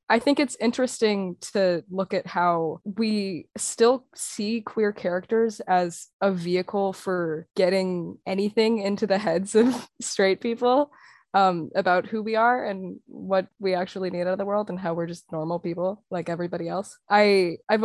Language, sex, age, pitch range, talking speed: English, female, 20-39, 180-215 Hz, 165 wpm